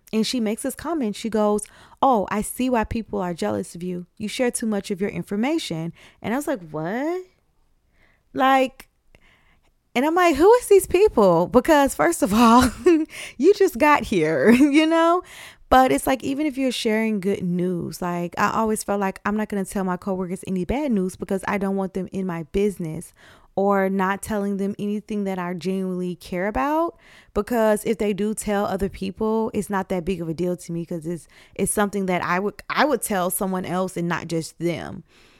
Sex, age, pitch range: female, 20-39, 185-245 Hz